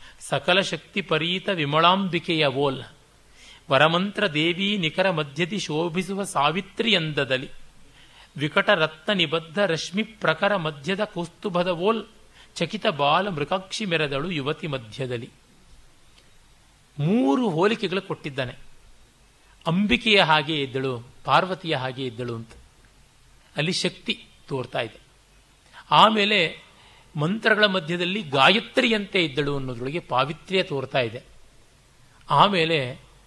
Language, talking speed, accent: Kannada, 90 wpm, native